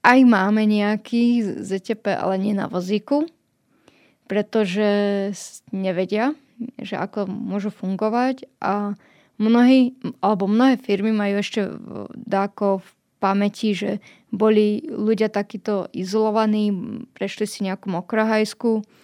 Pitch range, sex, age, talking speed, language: 195-225 Hz, female, 20-39, 105 wpm, Slovak